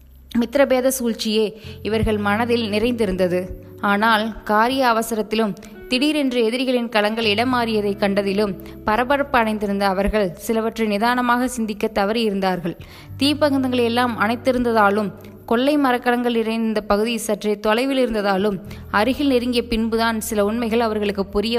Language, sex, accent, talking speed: Tamil, female, native, 95 wpm